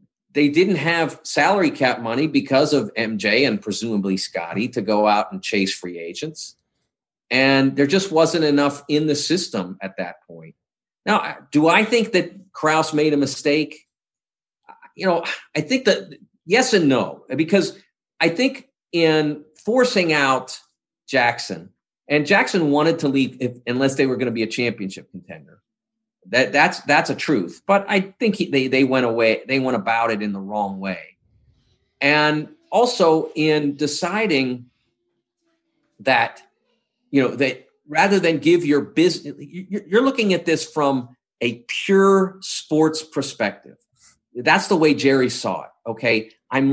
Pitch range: 125-190 Hz